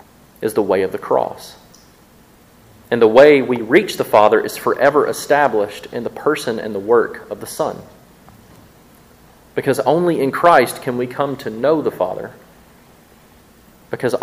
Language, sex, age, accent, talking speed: English, male, 30-49, American, 155 wpm